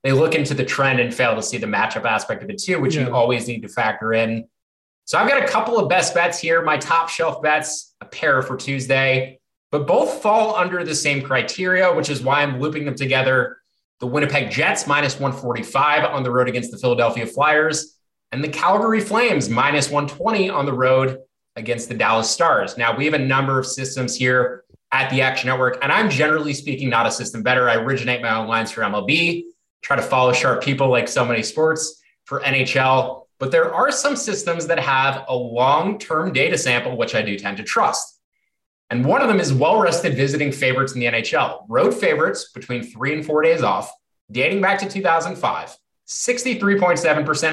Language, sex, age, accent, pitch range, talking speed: English, male, 20-39, American, 125-165 Hz, 195 wpm